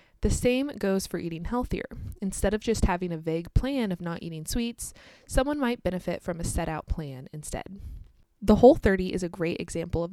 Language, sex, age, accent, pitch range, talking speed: English, female, 20-39, American, 170-220 Hz, 190 wpm